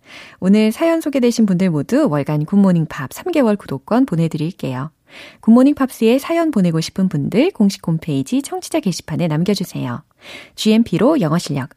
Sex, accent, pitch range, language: female, native, 160-255 Hz, Korean